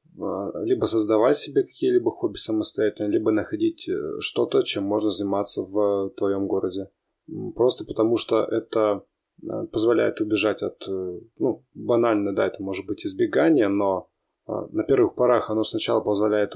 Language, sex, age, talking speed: Russian, male, 20-39, 130 wpm